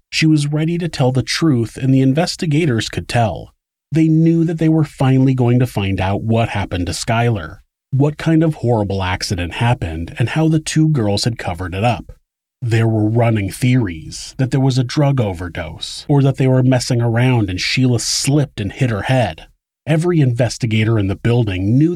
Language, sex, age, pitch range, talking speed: English, male, 30-49, 100-145 Hz, 190 wpm